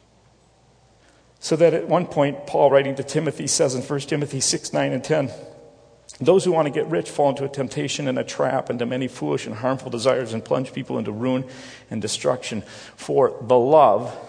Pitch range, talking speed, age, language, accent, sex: 115-135 Hz, 195 wpm, 40-59, English, American, male